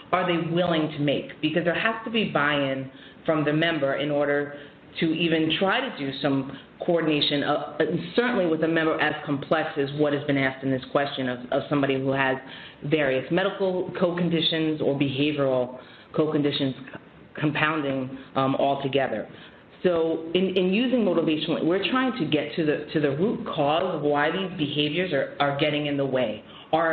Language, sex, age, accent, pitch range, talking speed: English, female, 30-49, American, 140-175 Hz, 170 wpm